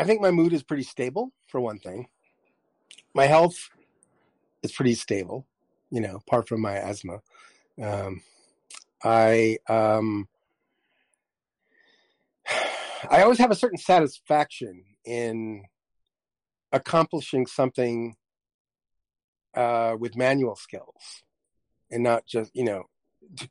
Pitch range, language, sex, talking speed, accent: 110-140 Hz, English, male, 110 wpm, American